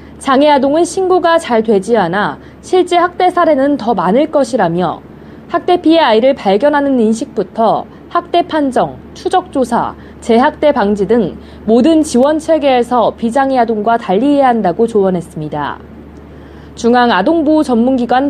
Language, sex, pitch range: Korean, female, 225-315 Hz